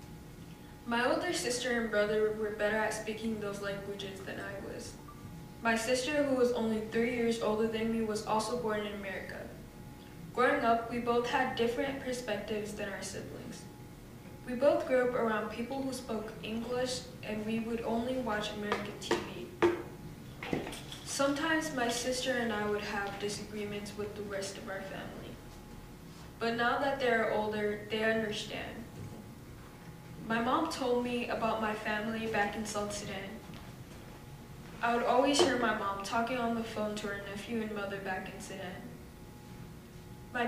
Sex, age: female, 10-29